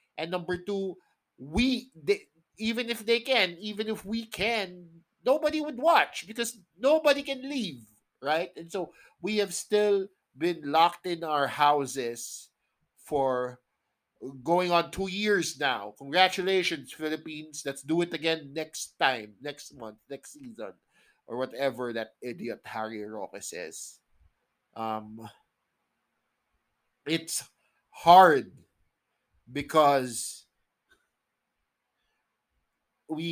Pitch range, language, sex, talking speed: 125-180 Hz, English, male, 110 wpm